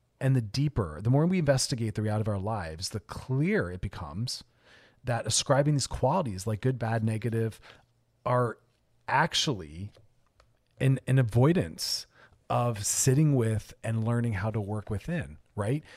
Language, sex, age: English, male, 40-59